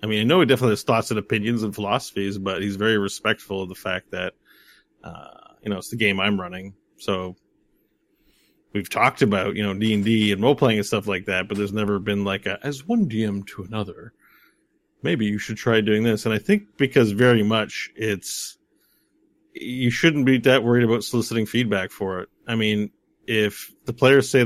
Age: 30-49